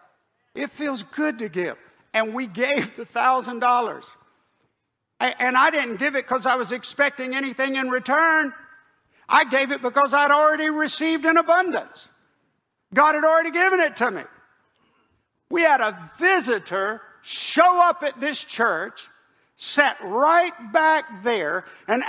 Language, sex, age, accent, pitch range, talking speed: English, male, 60-79, American, 220-315 Hz, 140 wpm